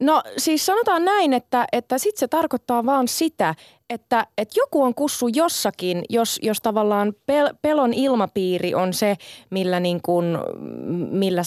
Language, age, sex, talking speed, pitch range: Finnish, 20-39, female, 150 wpm, 175-240 Hz